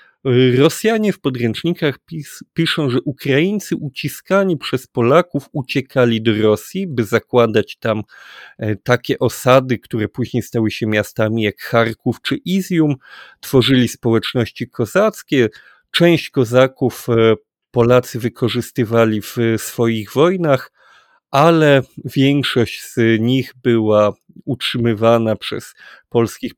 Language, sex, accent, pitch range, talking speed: Polish, male, native, 115-150 Hz, 100 wpm